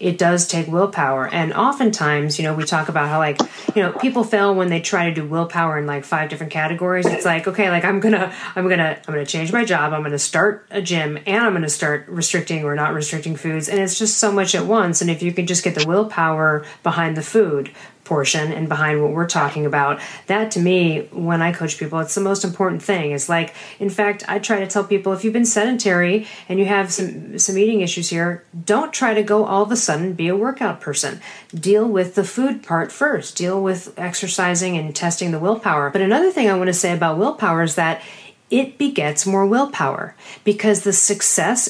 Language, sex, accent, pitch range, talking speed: English, female, American, 165-205 Hz, 230 wpm